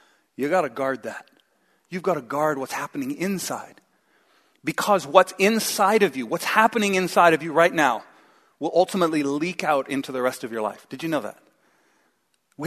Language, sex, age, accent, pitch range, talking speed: English, male, 40-59, American, 140-190 Hz, 185 wpm